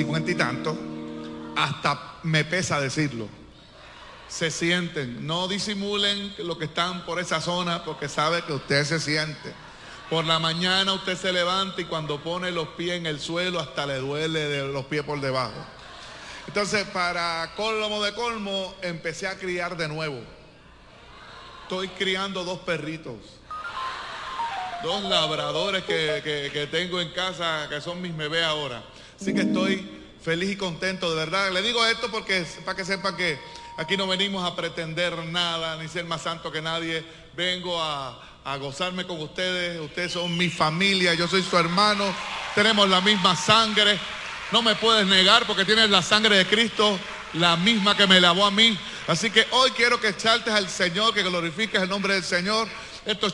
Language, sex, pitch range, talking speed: Spanish, male, 160-200 Hz, 165 wpm